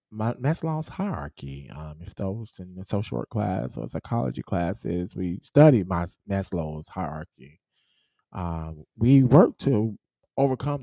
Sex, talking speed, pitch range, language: male, 120 wpm, 85-110 Hz, English